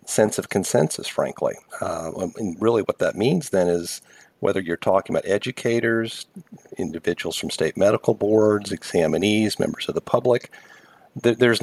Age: 50-69